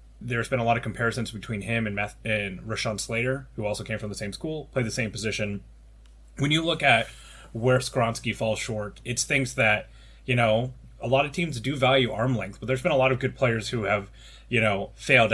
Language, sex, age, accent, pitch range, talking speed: English, male, 30-49, American, 110-130 Hz, 225 wpm